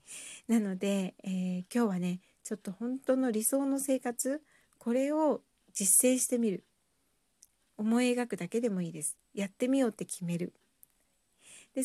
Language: Japanese